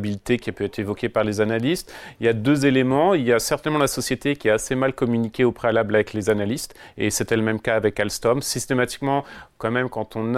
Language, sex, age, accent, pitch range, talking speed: French, male, 30-49, French, 115-140 Hz, 230 wpm